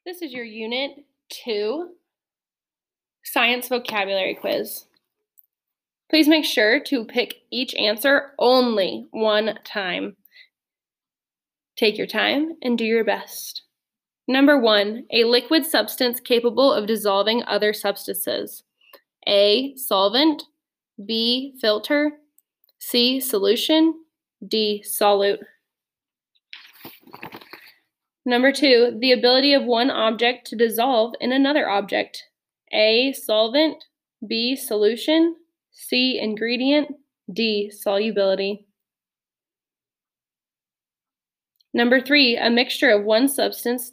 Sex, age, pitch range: female, 10-29, 215-285 Hz